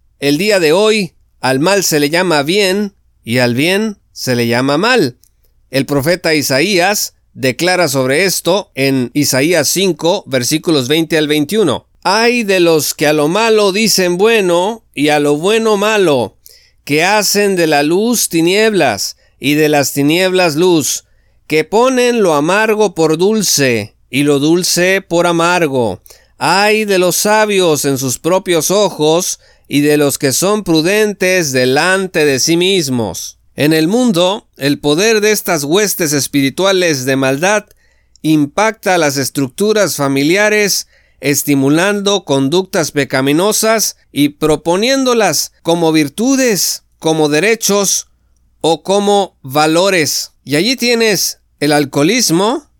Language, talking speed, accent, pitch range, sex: Spanish, 130 wpm, Mexican, 145-200 Hz, male